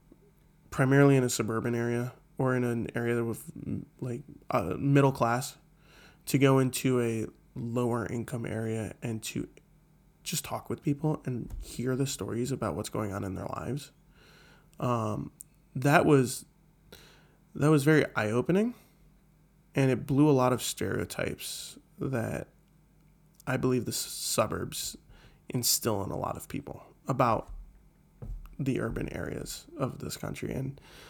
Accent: American